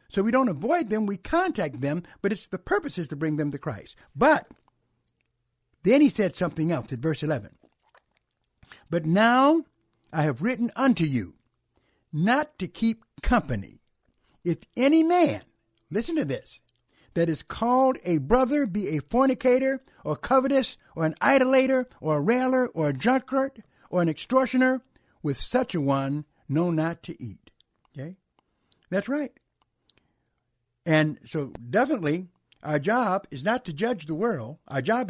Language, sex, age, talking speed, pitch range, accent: English, male, 60-79, 150 wpm, 150-250 Hz, American